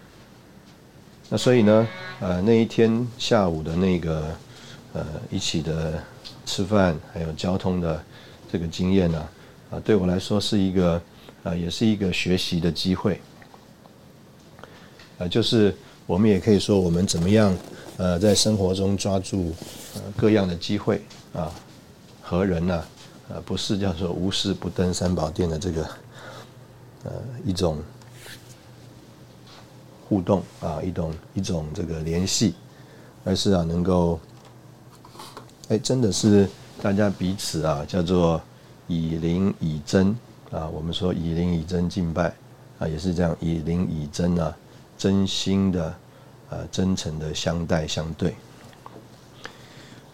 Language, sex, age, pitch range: Chinese, male, 50-69, 85-105 Hz